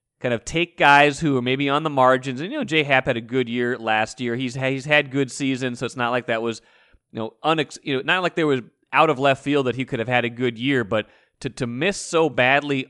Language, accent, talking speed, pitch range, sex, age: English, American, 280 wpm, 125-150 Hz, male, 30-49